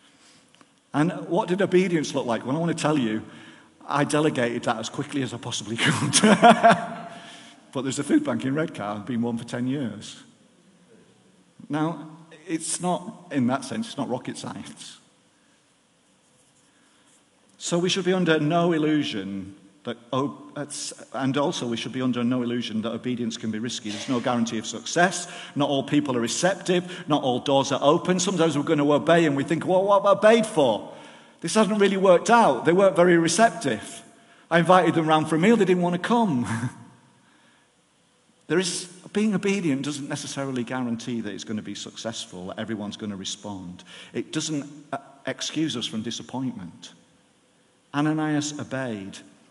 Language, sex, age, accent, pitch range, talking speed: English, male, 50-69, British, 120-175 Hz, 170 wpm